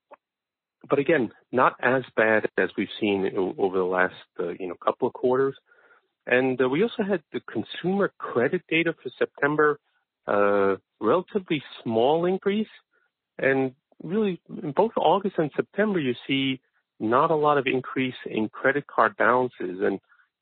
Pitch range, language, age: 115-190 Hz, English, 40-59